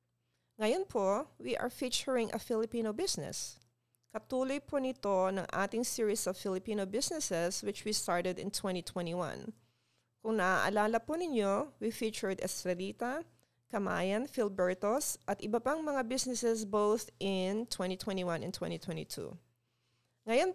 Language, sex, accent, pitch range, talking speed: English, female, Filipino, 180-230 Hz, 125 wpm